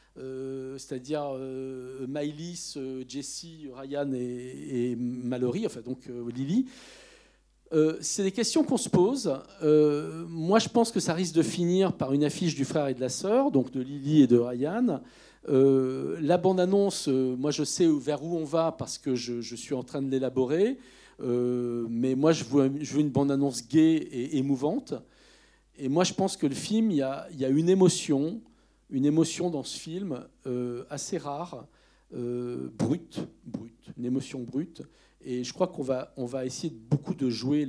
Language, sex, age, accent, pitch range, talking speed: French, male, 50-69, French, 130-170 Hz, 185 wpm